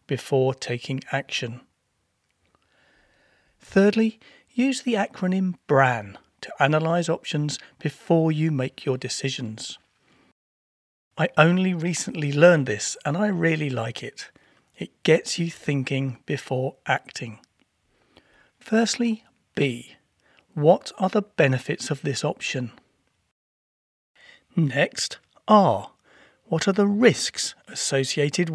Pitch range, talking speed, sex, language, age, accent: 140-185 Hz, 100 wpm, male, English, 40-59, British